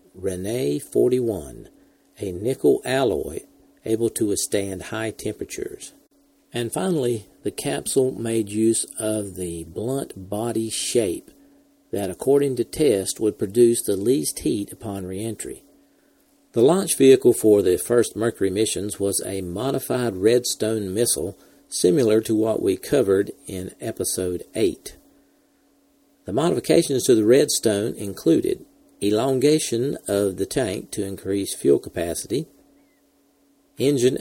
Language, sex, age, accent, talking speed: English, male, 50-69, American, 120 wpm